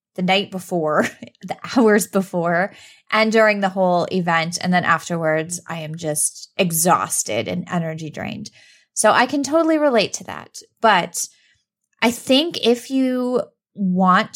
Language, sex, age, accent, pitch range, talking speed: English, female, 20-39, American, 180-225 Hz, 140 wpm